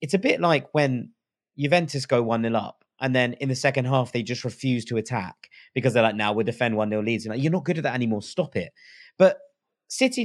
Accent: British